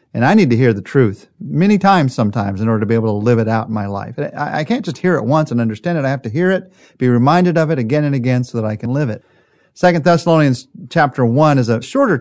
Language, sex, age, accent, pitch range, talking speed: English, male, 40-59, American, 110-145 Hz, 275 wpm